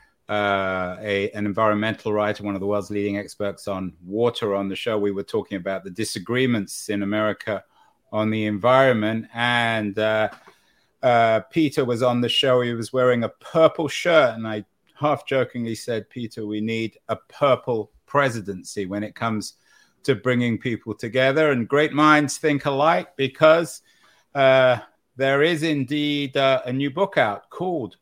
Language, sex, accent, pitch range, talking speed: English, male, British, 110-150 Hz, 160 wpm